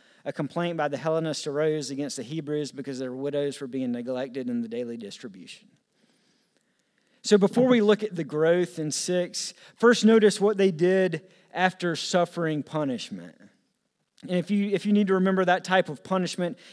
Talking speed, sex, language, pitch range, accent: 170 wpm, male, English, 160-195 Hz, American